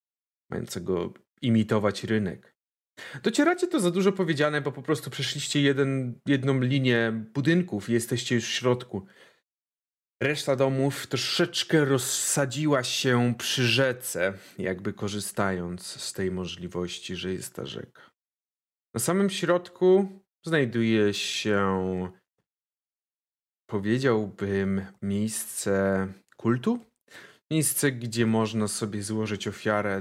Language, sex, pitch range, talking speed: Polish, male, 105-150 Hz, 100 wpm